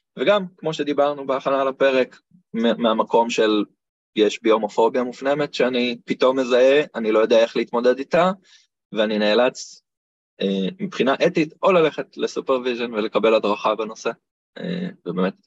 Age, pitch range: 20-39, 100-160 Hz